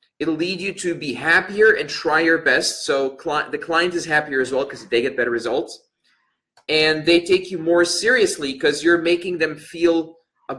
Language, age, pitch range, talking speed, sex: English, 30-49, 145-225 Hz, 195 wpm, male